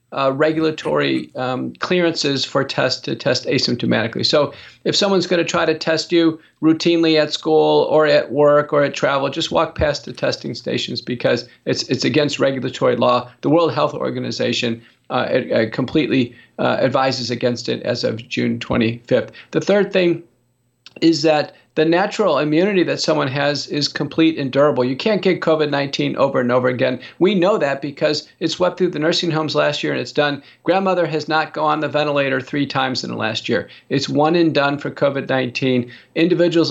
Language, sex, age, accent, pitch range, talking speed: English, male, 50-69, American, 135-165 Hz, 185 wpm